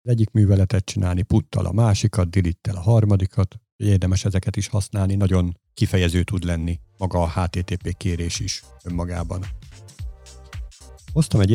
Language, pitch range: Hungarian, 90-110 Hz